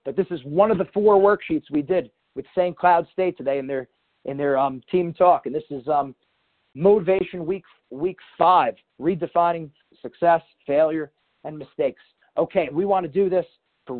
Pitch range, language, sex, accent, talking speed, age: 150-185 Hz, English, male, American, 180 wpm, 40-59